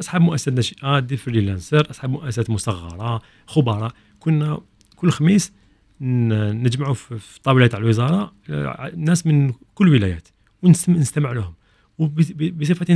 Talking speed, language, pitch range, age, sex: 105 wpm, Arabic, 115-155 Hz, 40-59, male